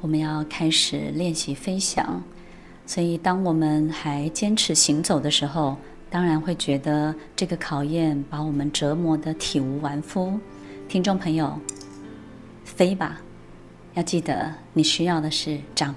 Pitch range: 150-180 Hz